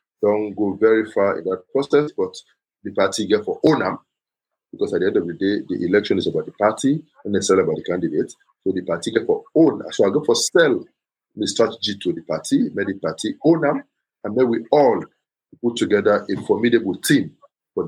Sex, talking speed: male, 210 wpm